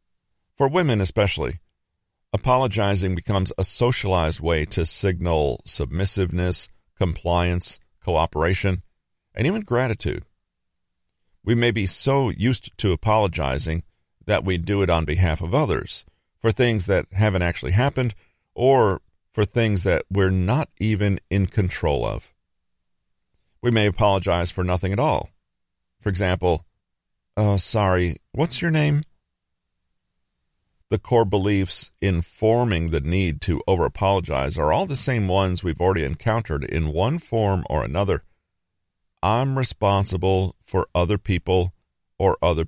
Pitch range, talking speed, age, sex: 85-105 Hz, 125 wpm, 40-59, male